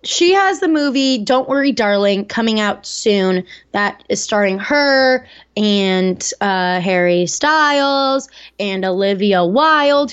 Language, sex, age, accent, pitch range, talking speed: English, female, 20-39, American, 195-240 Hz, 125 wpm